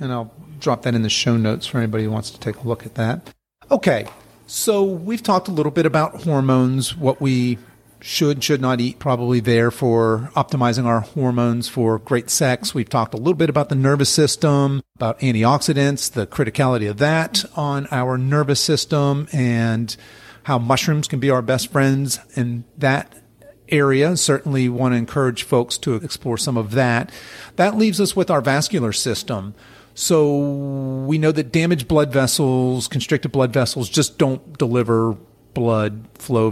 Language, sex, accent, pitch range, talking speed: English, male, American, 115-145 Hz, 175 wpm